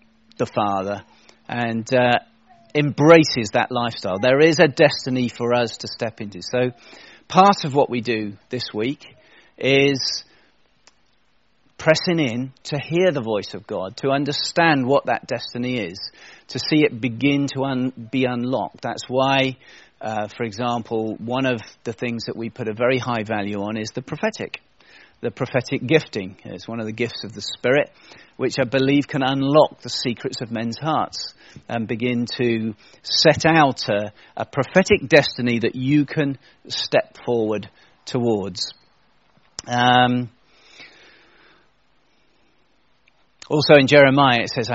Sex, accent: male, British